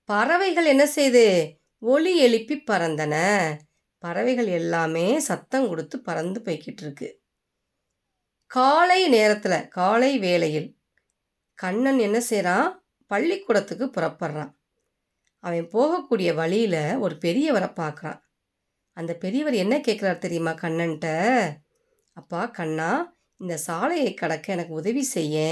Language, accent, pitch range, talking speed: Tamil, native, 165-255 Hz, 100 wpm